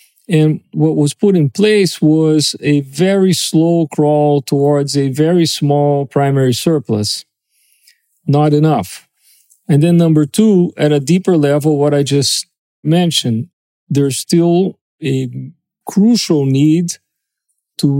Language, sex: English, male